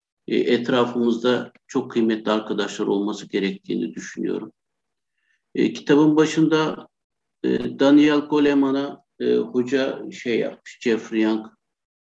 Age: 60-79